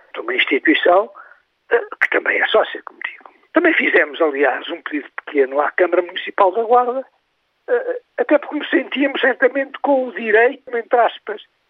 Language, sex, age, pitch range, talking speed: Portuguese, male, 60-79, 235-355 Hz, 150 wpm